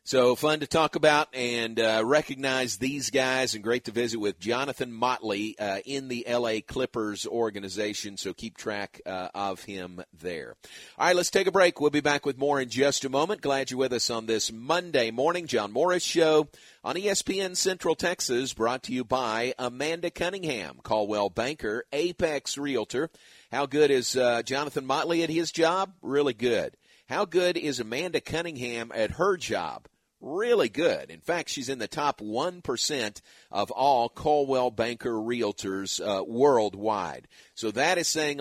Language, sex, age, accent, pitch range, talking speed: English, male, 50-69, American, 110-150 Hz, 170 wpm